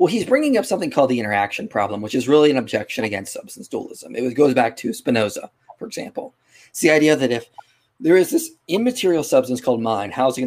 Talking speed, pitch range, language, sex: 225 wpm, 125-190 Hz, English, male